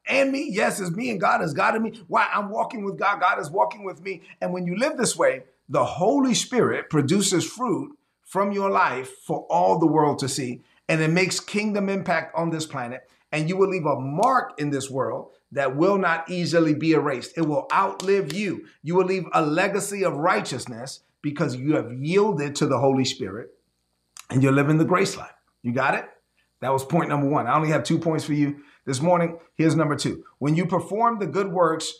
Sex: male